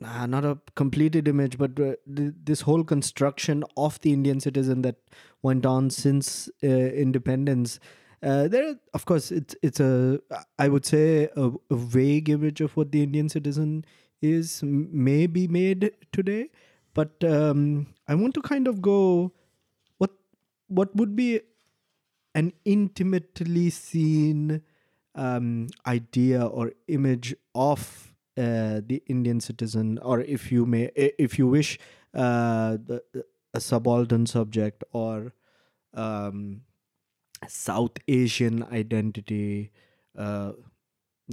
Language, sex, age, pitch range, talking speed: English, male, 20-39, 120-155 Hz, 130 wpm